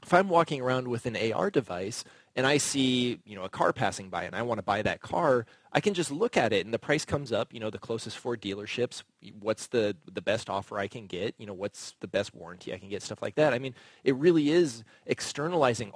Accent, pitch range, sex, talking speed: American, 115-155 Hz, male, 250 wpm